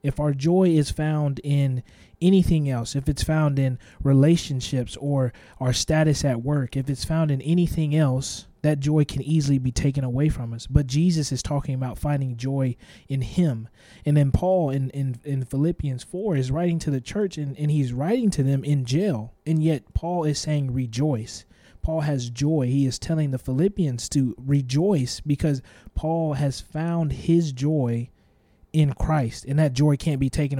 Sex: male